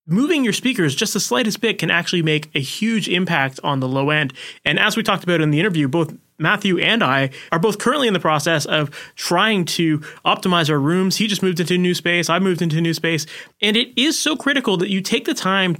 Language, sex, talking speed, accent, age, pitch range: English, male, 245 wpm, American, 30-49, 145-200 Hz